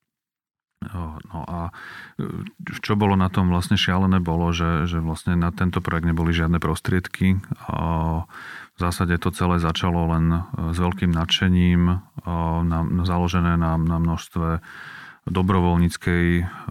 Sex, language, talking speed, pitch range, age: male, Slovak, 115 wpm, 85-95 Hz, 30-49